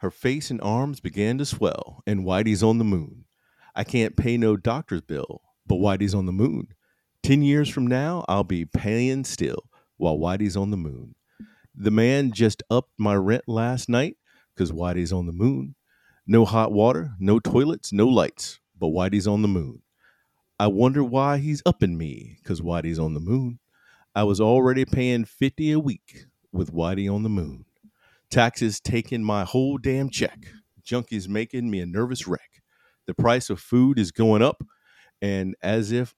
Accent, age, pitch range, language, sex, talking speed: American, 50-69, 100-125 Hz, English, male, 175 wpm